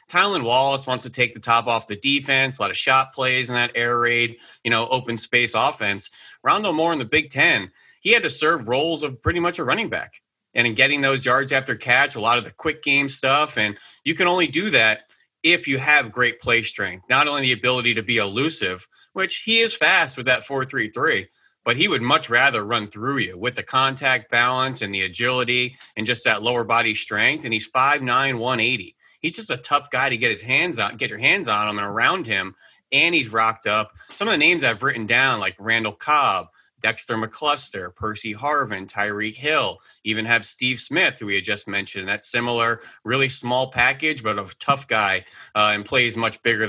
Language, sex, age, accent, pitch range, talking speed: English, male, 30-49, American, 110-135 Hz, 215 wpm